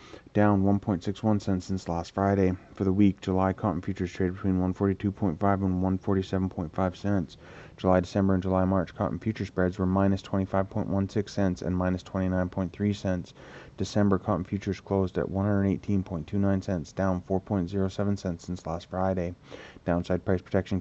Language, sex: English, male